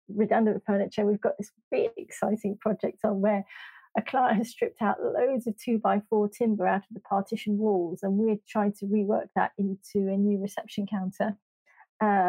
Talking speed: 185 wpm